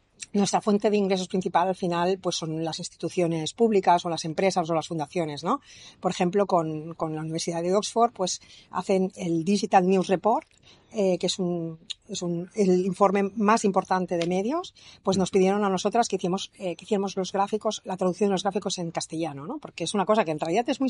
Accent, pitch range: Spanish, 170-200 Hz